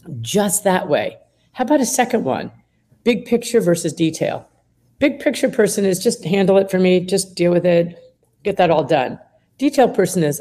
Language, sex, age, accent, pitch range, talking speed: English, female, 50-69, American, 165-235 Hz, 185 wpm